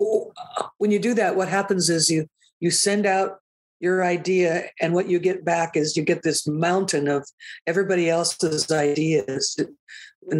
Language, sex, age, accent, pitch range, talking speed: English, female, 60-79, American, 155-190 Hz, 160 wpm